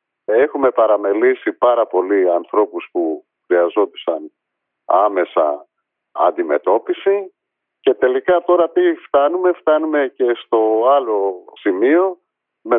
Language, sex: Greek, male